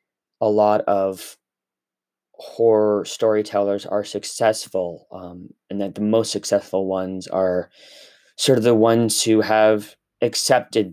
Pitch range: 95-115 Hz